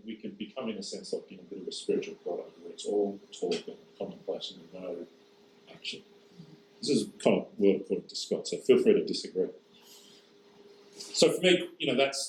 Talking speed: 205 wpm